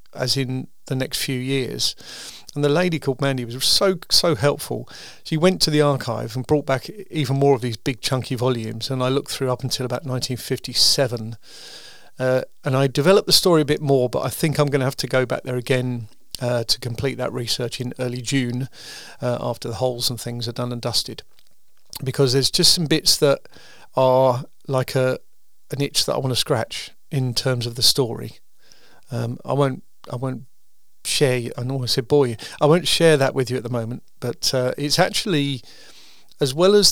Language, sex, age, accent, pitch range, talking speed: English, male, 40-59, British, 125-145 Hz, 205 wpm